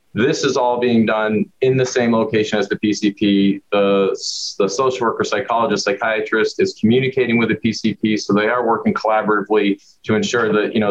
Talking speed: 180 wpm